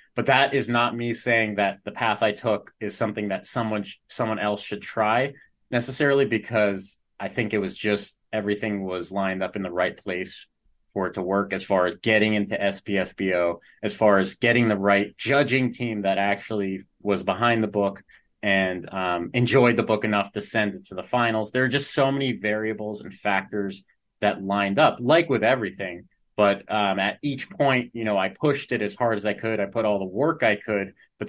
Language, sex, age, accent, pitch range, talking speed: English, male, 30-49, American, 100-115 Hz, 205 wpm